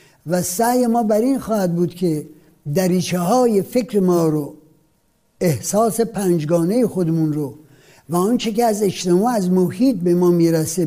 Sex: male